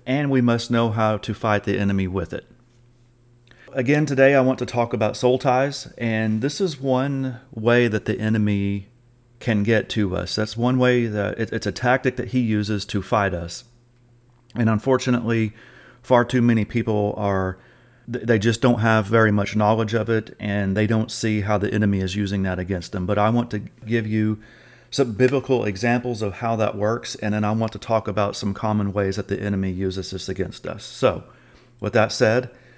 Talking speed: 200 wpm